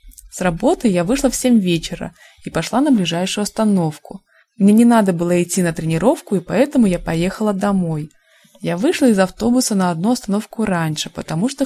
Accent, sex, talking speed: native, female, 175 wpm